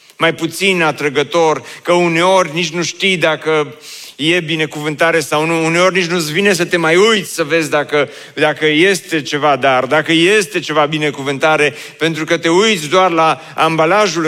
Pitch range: 145-180 Hz